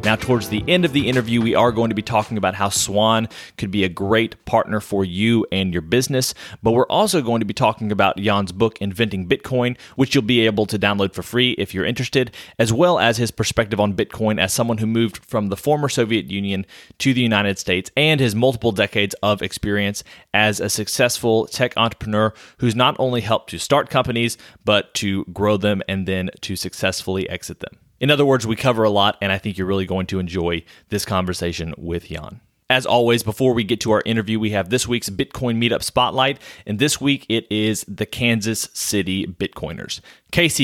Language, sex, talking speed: English, male, 210 wpm